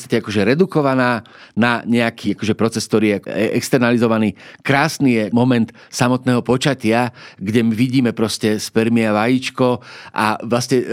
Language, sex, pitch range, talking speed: Slovak, male, 115-140 Hz, 125 wpm